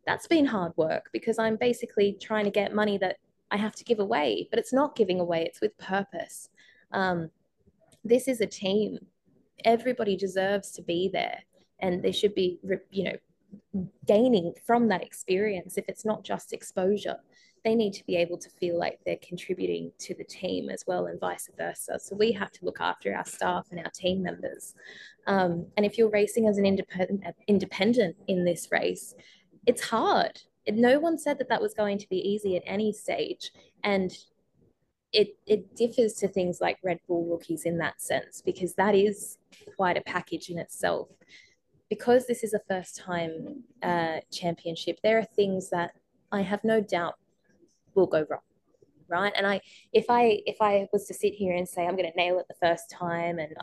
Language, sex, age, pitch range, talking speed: English, female, 20-39, 180-215 Hz, 190 wpm